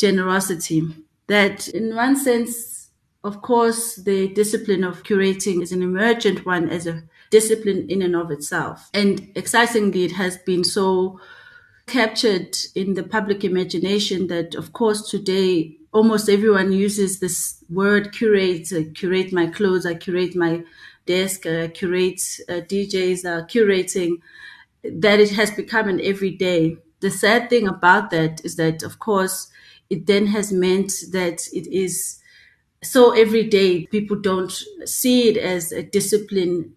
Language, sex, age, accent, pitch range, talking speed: English, female, 30-49, South African, 180-210 Hz, 140 wpm